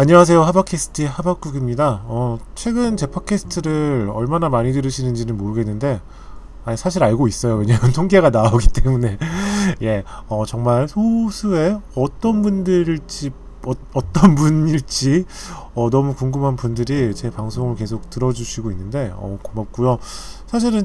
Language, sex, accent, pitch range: Korean, male, native, 115-155 Hz